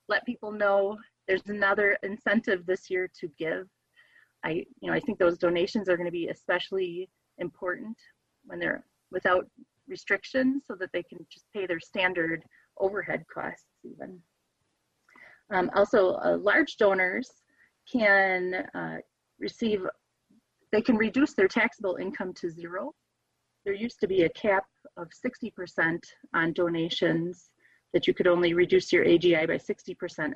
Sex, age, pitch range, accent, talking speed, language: female, 30-49, 180-245 Hz, American, 140 wpm, English